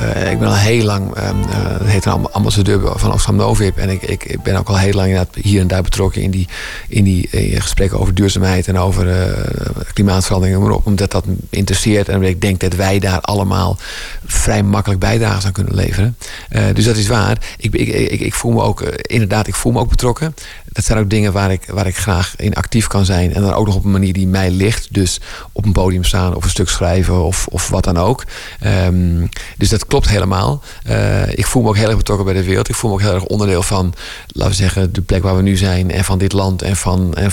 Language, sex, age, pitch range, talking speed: Dutch, male, 50-69, 95-110 Hz, 230 wpm